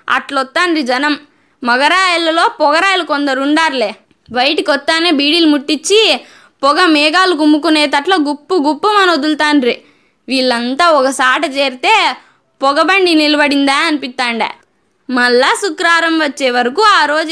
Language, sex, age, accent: Telugu, female, 20-39, native